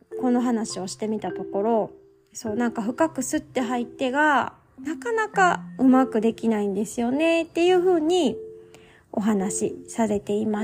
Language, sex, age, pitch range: Japanese, female, 20-39, 205-315 Hz